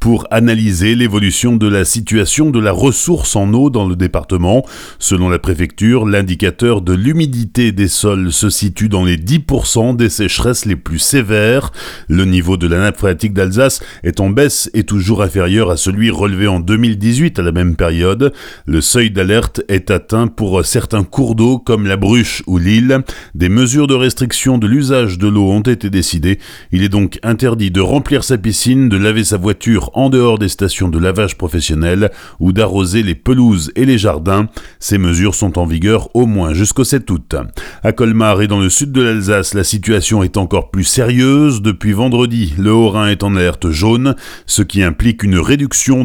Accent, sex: French, male